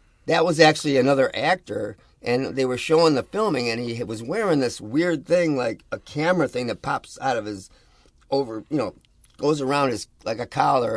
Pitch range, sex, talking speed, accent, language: 115-155 Hz, male, 195 wpm, American, English